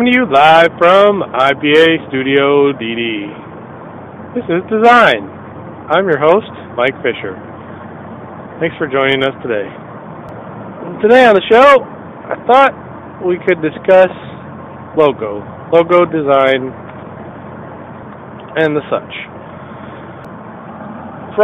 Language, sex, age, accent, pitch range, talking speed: English, male, 40-59, American, 110-165 Hz, 100 wpm